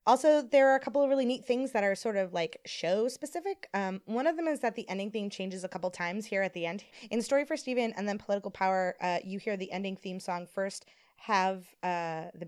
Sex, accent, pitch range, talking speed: female, American, 170-210 Hz, 250 wpm